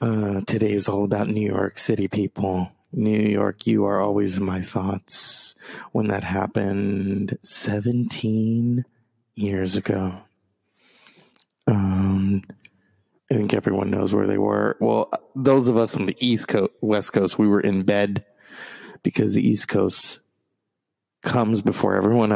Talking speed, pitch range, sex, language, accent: 140 wpm, 95-110 Hz, male, English, American